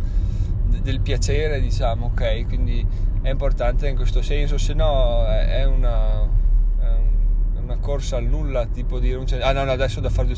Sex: male